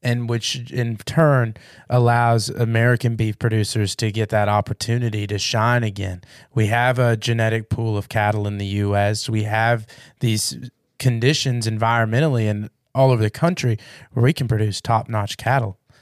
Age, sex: 20-39, male